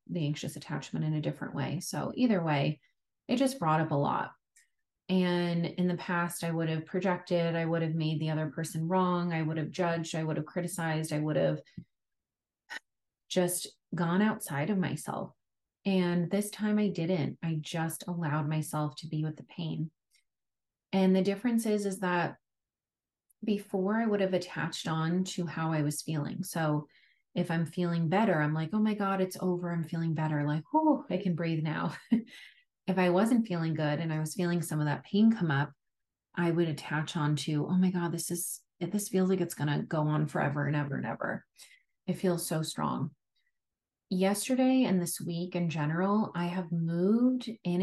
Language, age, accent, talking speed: English, 30-49, American, 190 wpm